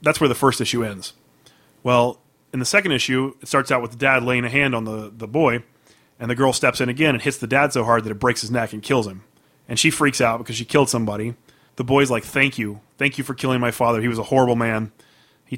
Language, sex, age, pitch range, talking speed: English, male, 30-49, 120-140 Hz, 265 wpm